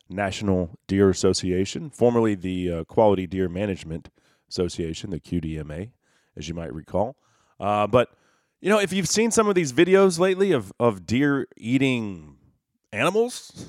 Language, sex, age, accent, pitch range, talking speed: English, male, 30-49, American, 90-120 Hz, 145 wpm